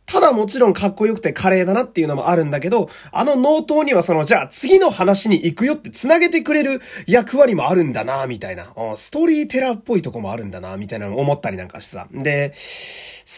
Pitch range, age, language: 155-250 Hz, 30-49, Japanese